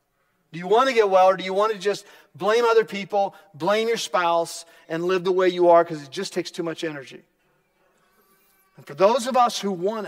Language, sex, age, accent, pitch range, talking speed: English, male, 40-59, American, 165-260 Hz, 225 wpm